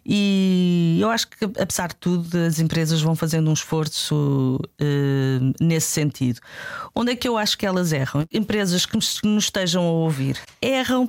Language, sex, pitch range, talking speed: Portuguese, female, 160-210 Hz, 170 wpm